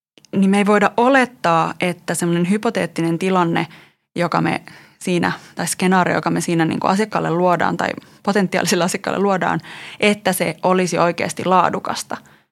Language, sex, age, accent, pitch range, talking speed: Finnish, female, 20-39, native, 165-200 Hz, 145 wpm